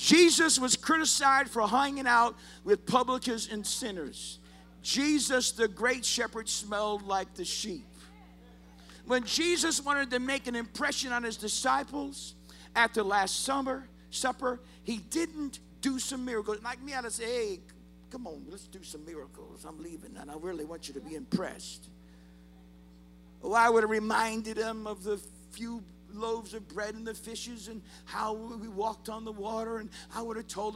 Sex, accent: male, American